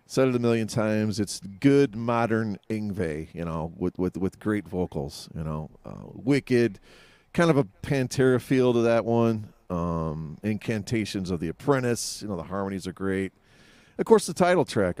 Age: 40-59